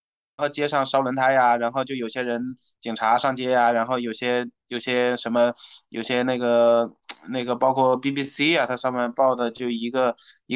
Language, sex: Chinese, male